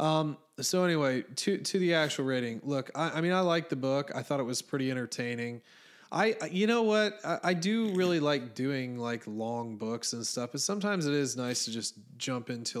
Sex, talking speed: male, 220 wpm